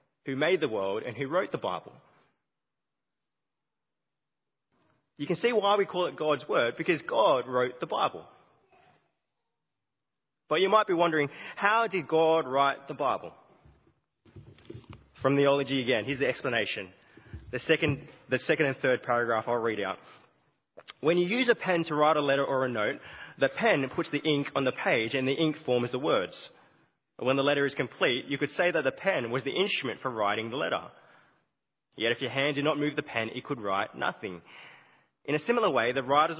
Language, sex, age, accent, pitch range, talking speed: English, male, 20-39, Australian, 130-160 Hz, 185 wpm